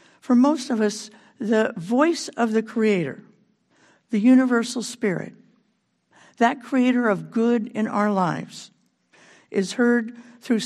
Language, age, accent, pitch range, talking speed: English, 60-79, American, 205-245 Hz, 125 wpm